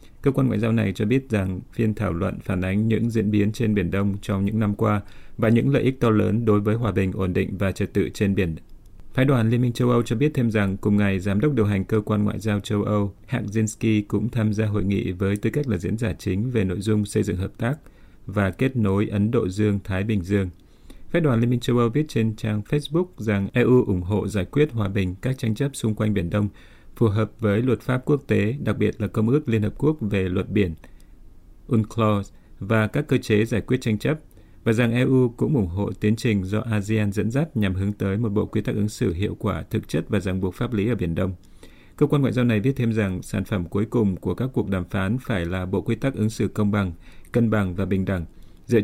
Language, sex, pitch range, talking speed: Vietnamese, male, 100-115 Hz, 255 wpm